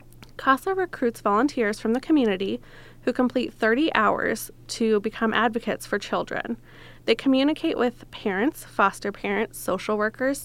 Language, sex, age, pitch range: English, female, 20-39, 205-245 Hz